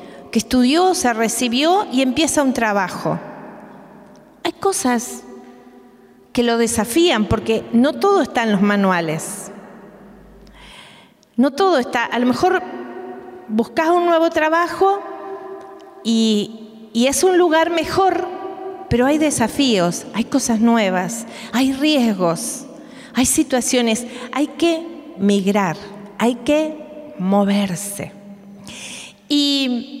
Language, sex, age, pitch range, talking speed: Spanish, female, 40-59, 205-290 Hz, 105 wpm